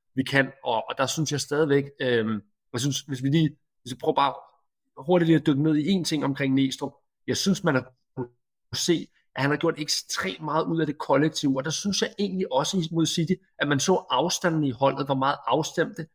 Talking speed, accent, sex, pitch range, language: 215 wpm, native, male, 135-170 Hz, Danish